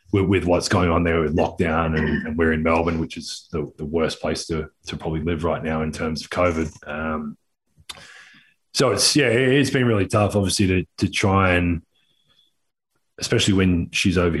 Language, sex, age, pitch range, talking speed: English, male, 20-39, 80-105 Hz, 190 wpm